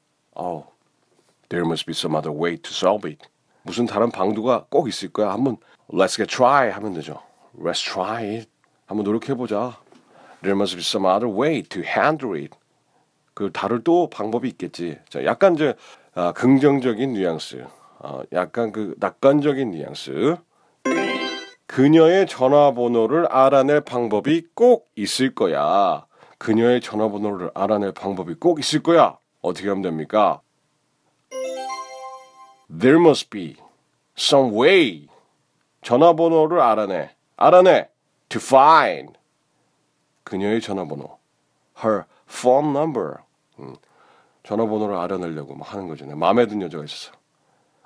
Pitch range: 95-140 Hz